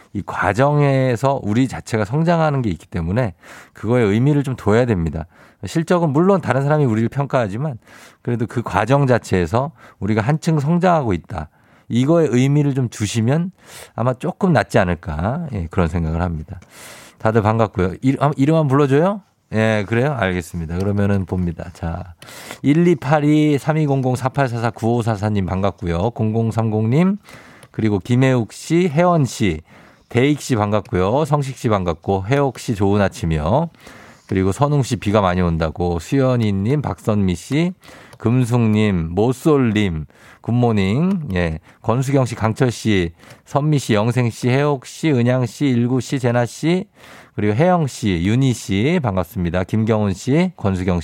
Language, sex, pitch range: Korean, male, 100-140 Hz